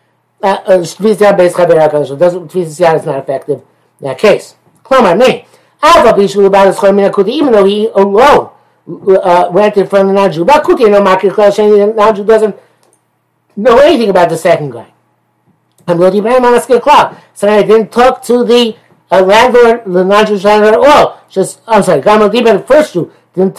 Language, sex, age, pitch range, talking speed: English, male, 60-79, 175-220 Hz, 120 wpm